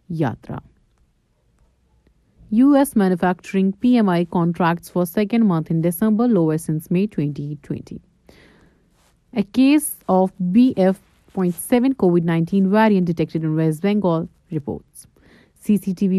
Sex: female